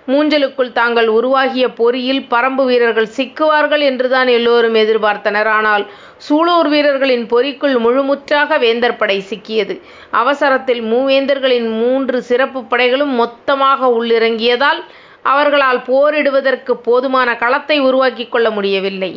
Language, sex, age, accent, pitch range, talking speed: Tamil, female, 30-49, native, 230-270 Hz, 95 wpm